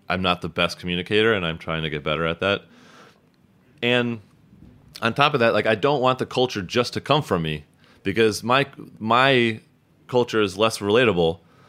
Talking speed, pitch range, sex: 185 wpm, 90-120 Hz, male